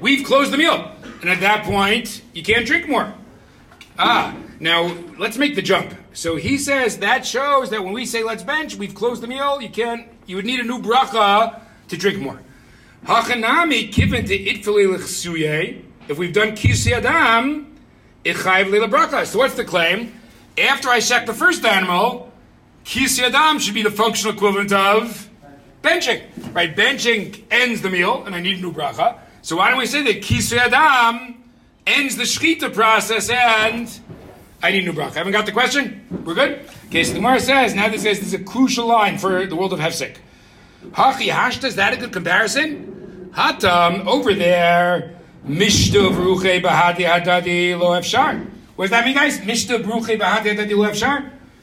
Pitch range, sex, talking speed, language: 190-245 Hz, male, 160 wpm, English